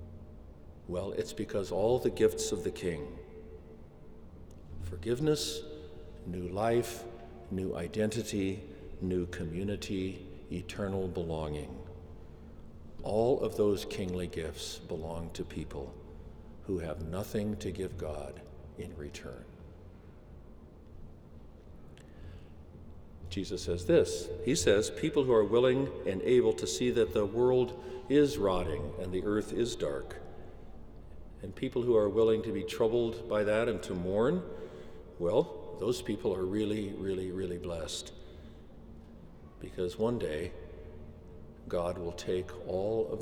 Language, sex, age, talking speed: English, male, 60-79, 120 wpm